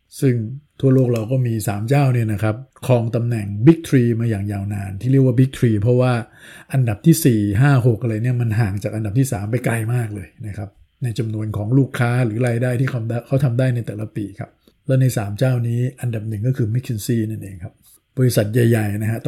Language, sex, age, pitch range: Thai, male, 60-79, 110-130 Hz